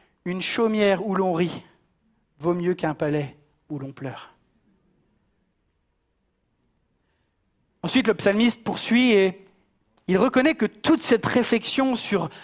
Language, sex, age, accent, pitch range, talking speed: French, male, 40-59, French, 175-225 Hz, 115 wpm